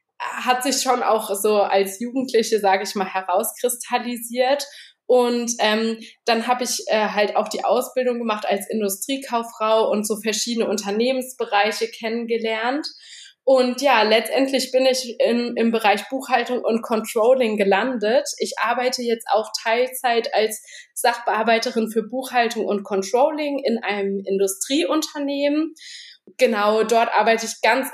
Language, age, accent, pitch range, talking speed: German, 20-39, German, 215-260 Hz, 130 wpm